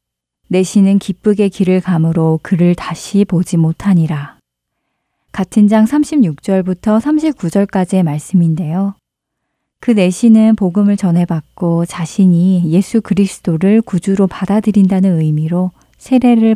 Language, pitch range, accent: Korean, 165-200 Hz, native